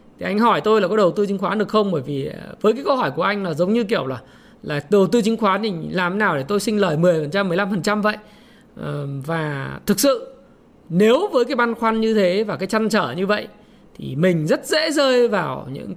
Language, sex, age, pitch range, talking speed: Vietnamese, male, 20-39, 180-235 Hz, 240 wpm